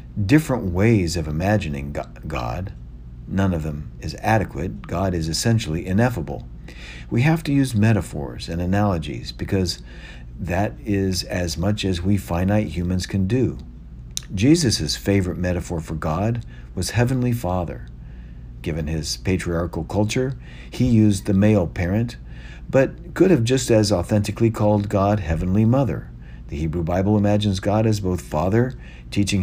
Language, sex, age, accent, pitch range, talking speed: English, male, 50-69, American, 80-110 Hz, 140 wpm